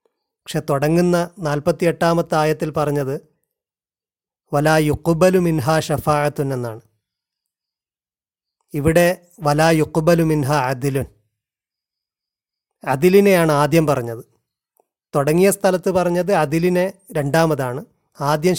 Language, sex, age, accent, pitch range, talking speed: Malayalam, male, 30-49, native, 150-185 Hz, 70 wpm